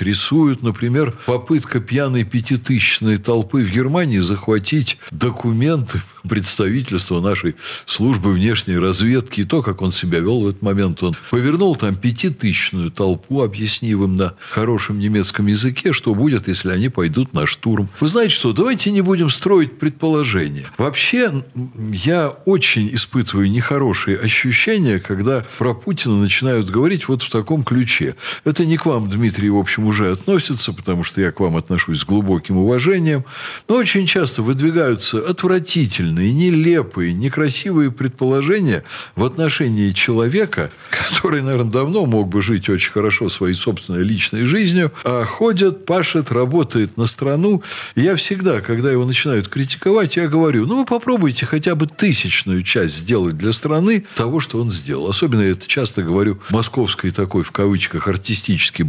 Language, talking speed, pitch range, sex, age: Russian, 150 wpm, 100-150 Hz, male, 60-79